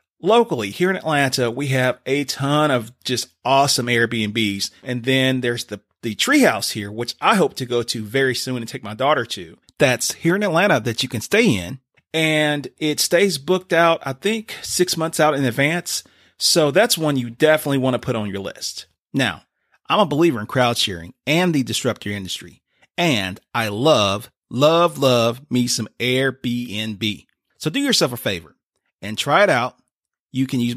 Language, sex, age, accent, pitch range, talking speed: English, male, 40-59, American, 120-165 Hz, 185 wpm